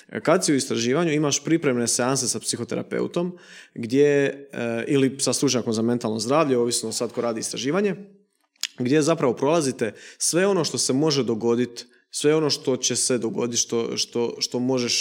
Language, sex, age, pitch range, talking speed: Croatian, male, 20-39, 115-140 Hz, 160 wpm